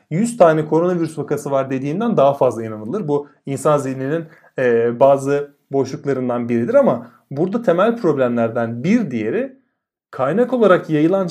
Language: Turkish